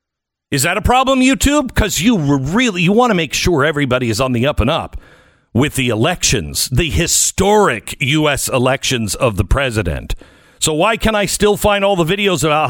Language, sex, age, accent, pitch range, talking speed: English, male, 50-69, American, 130-210 Hz, 190 wpm